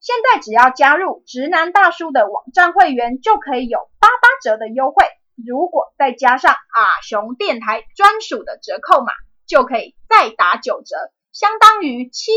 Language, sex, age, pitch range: Chinese, female, 20-39, 255-365 Hz